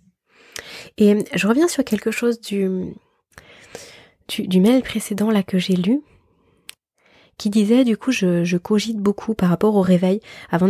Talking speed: 155 wpm